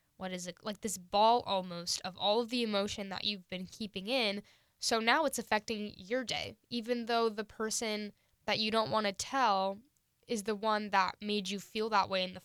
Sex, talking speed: female, 210 wpm